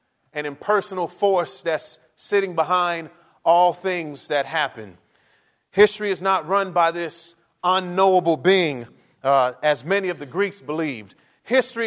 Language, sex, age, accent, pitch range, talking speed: English, male, 30-49, American, 170-225 Hz, 130 wpm